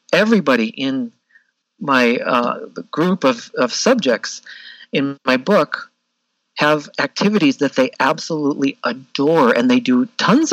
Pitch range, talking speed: 130-190 Hz, 120 wpm